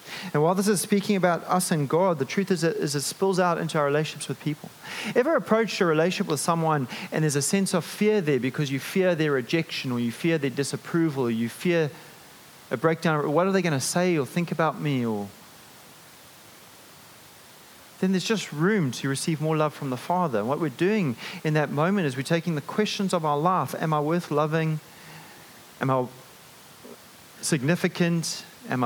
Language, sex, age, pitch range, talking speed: English, male, 30-49, 130-175 Hz, 195 wpm